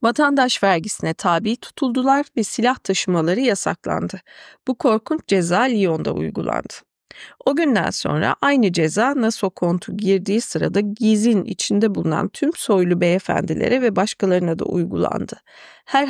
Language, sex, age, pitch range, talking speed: Turkish, female, 40-59, 175-230 Hz, 125 wpm